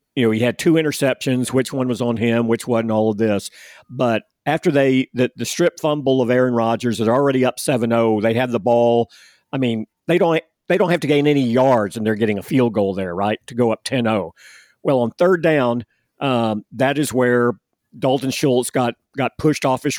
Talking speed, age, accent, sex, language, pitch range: 215 wpm, 50-69, American, male, English, 115-145 Hz